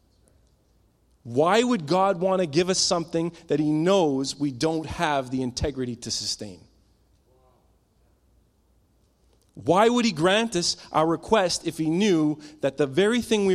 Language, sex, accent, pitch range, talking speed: English, male, American, 110-165 Hz, 145 wpm